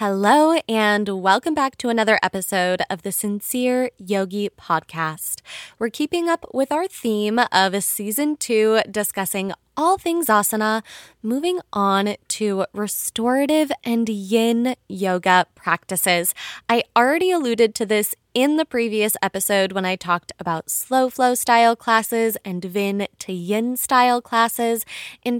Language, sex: English, female